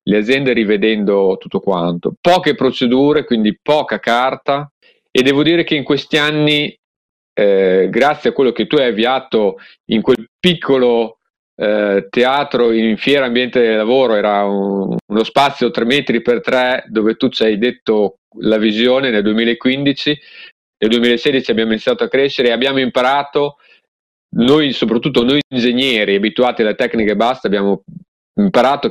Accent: native